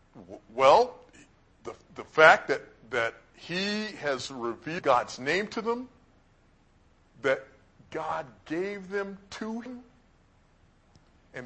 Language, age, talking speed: English, 50-69, 105 wpm